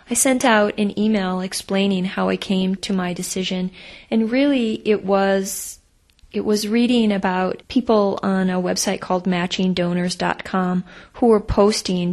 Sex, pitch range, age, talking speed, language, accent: female, 175-195 Hz, 20-39, 145 wpm, English, American